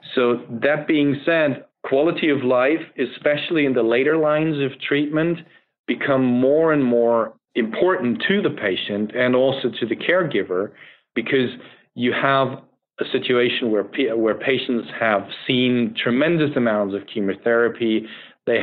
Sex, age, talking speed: male, 40-59, 135 wpm